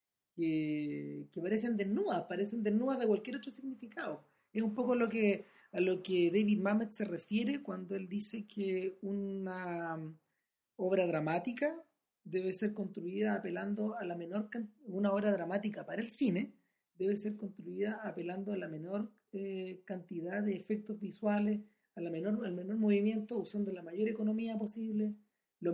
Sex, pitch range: male, 180-215 Hz